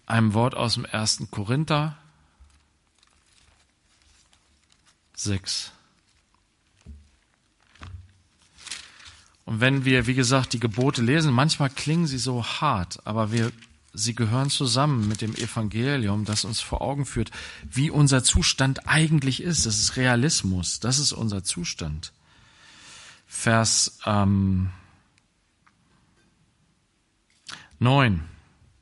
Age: 40-59